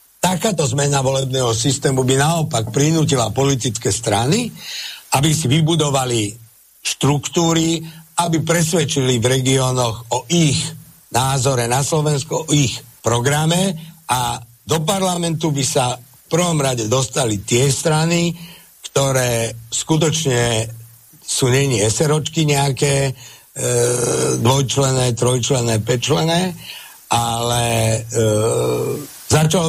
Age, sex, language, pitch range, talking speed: 60-79, male, Slovak, 120-150 Hz, 95 wpm